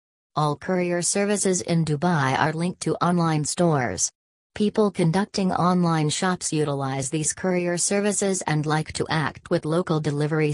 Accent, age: American, 40-59